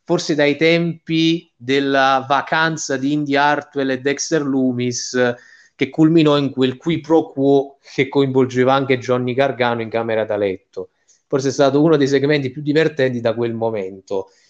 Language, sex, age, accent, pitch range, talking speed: Italian, male, 30-49, native, 135-180 Hz, 155 wpm